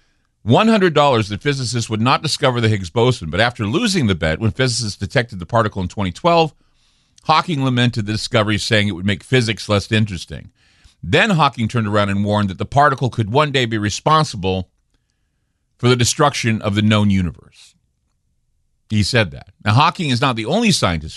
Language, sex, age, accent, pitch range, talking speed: English, male, 50-69, American, 95-135 Hz, 175 wpm